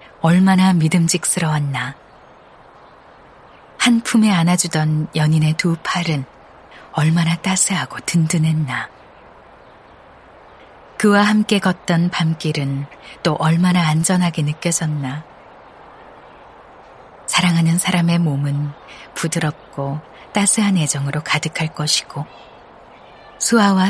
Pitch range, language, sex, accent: 155-190 Hz, Korean, female, native